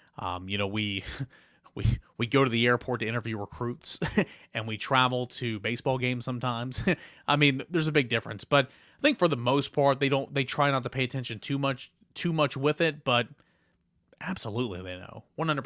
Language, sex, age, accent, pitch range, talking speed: English, male, 30-49, American, 110-135 Hz, 200 wpm